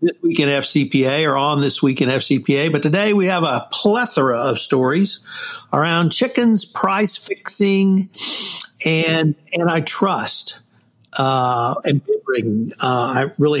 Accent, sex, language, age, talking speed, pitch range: American, male, English, 60-79, 130 wpm, 135-165 Hz